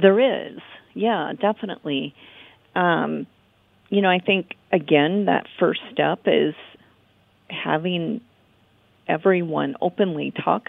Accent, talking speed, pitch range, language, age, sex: American, 100 wpm, 150-185 Hz, English, 40-59, female